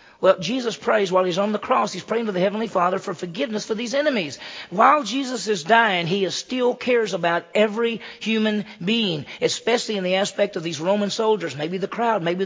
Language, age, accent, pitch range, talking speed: English, 40-59, American, 165-220 Hz, 200 wpm